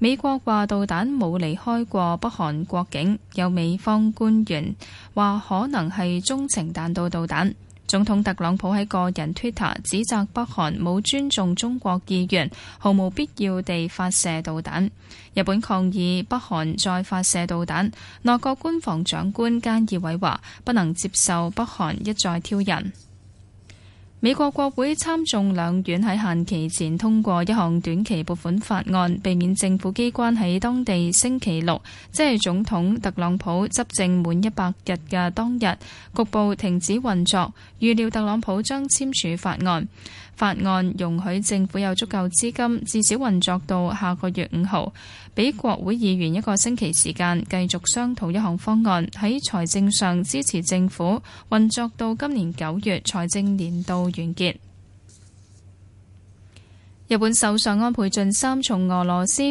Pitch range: 175-220 Hz